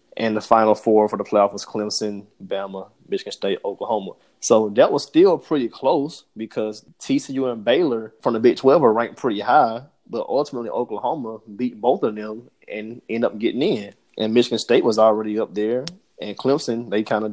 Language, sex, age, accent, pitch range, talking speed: English, male, 20-39, American, 105-130 Hz, 190 wpm